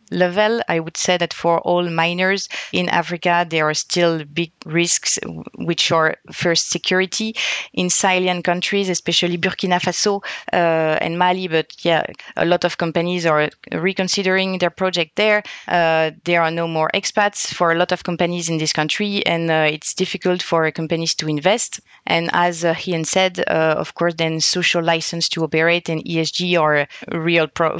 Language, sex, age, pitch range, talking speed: English, female, 30-49, 160-180 Hz, 170 wpm